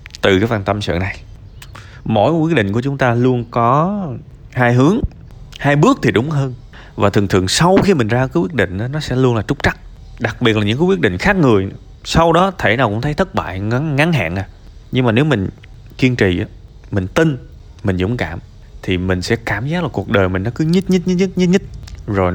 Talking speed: 240 wpm